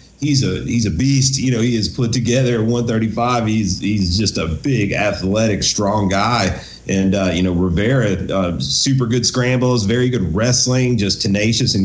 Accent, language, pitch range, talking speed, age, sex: American, English, 105-130 Hz, 175 wpm, 40-59, male